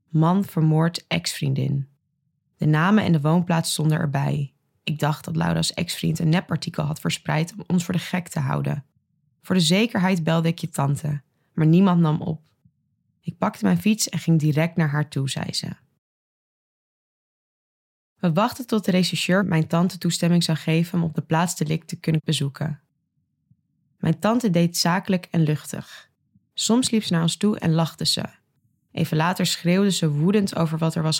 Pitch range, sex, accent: 155-180 Hz, female, Dutch